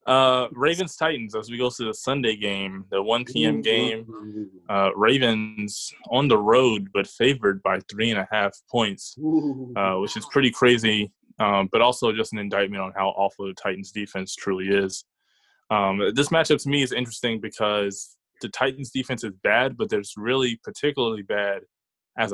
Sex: male